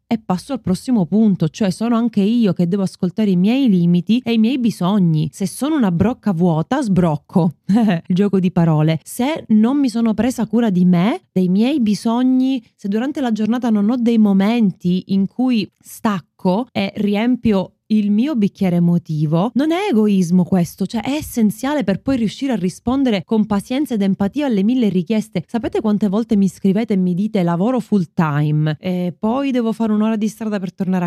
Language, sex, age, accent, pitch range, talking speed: Italian, female, 20-39, native, 180-230 Hz, 185 wpm